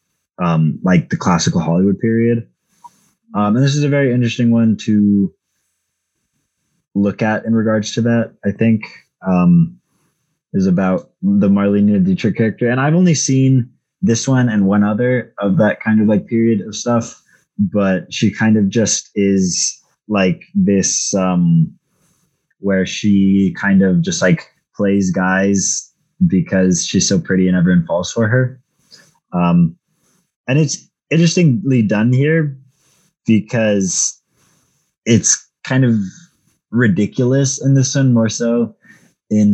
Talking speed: 135 wpm